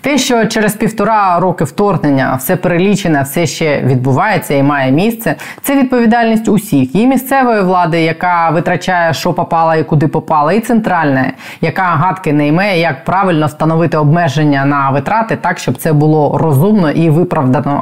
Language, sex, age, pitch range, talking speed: Ukrainian, female, 20-39, 145-180 Hz, 155 wpm